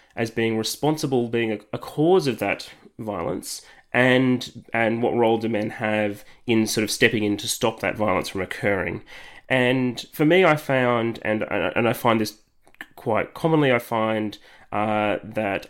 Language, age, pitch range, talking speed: English, 20-39, 110-125 Hz, 170 wpm